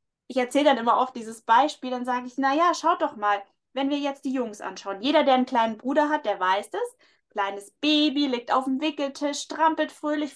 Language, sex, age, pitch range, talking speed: German, female, 20-39, 235-290 Hz, 215 wpm